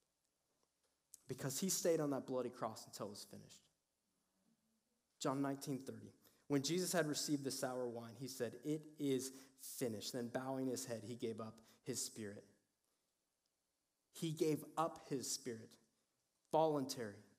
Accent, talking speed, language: American, 140 wpm, English